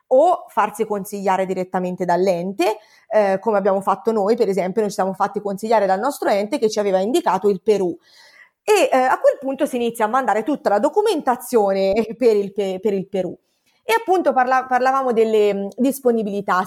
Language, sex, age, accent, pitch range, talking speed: Italian, female, 30-49, native, 195-250 Hz, 175 wpm